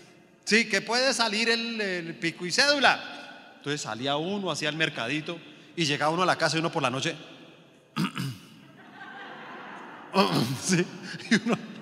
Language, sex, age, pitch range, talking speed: Spanish, male, 30-49, 150-225 Hz, 145 wpm